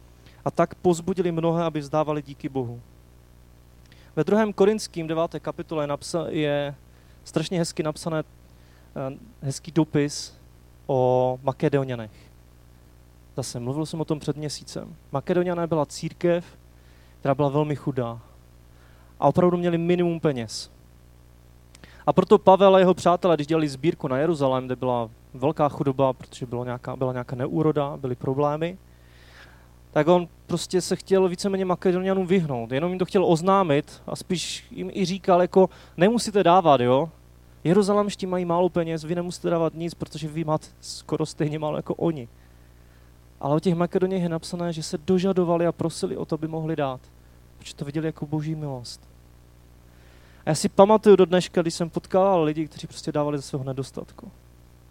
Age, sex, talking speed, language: 20-39, male, 150 wpm, Czech